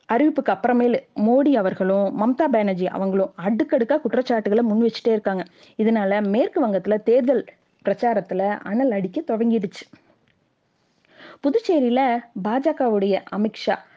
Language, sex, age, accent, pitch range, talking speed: Tamil, female, 20-39, native, 200-270 Hz, 100 wpm